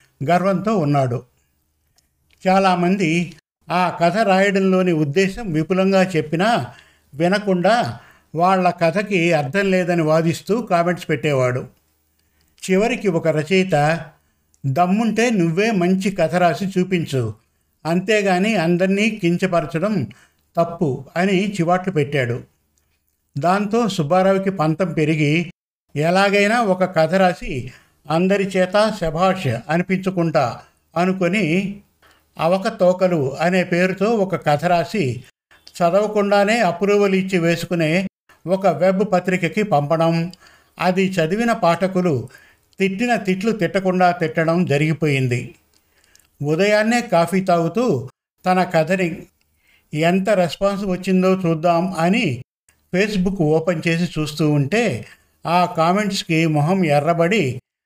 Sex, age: male, 50-69